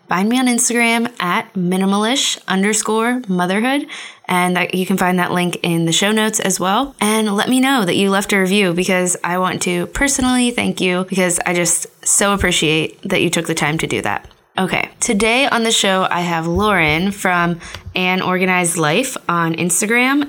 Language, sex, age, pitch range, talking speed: English, female, 10-29, 175-215 Hz, 185 wpm